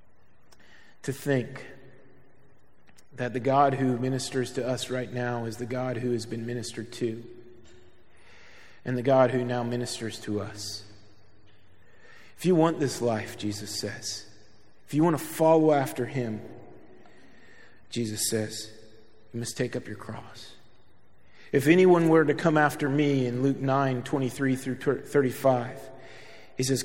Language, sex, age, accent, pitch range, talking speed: English, male, 40-59, American, 115-150 Hz, 145 wpm